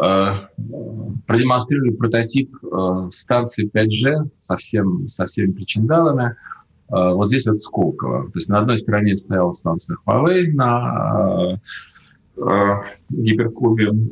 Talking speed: 100 wpm